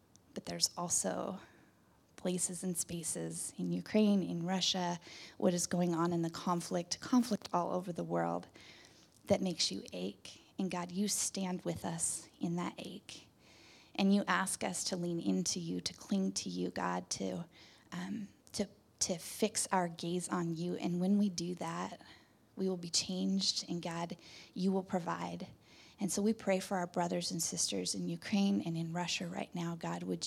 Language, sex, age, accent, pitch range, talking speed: English, female, 20-39, American, 165-190 Hz, 175 wpm